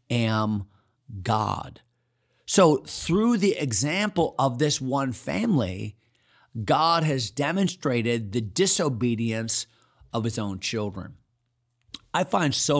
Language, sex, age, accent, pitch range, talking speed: English, male, 40-59, American, 115-145 Hz, 105 wpm